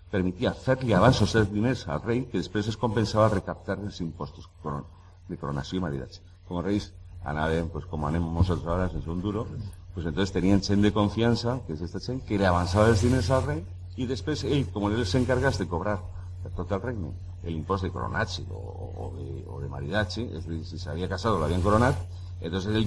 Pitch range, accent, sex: 90-110 Hz, Spanish, male